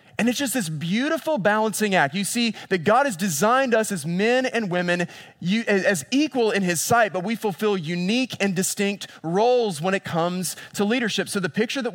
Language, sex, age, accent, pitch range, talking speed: English, male, 20-39, American, 160-215 Hz, 195 wpm